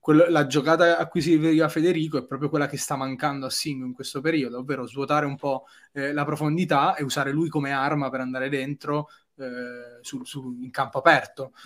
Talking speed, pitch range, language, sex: 190 wpm, 135-150 Hz, Italian, male